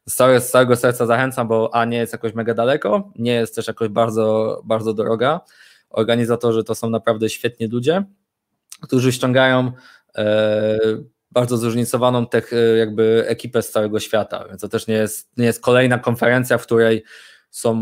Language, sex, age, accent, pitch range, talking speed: Polish, male, 20-39, native, 110-125 Hz, 160 wpm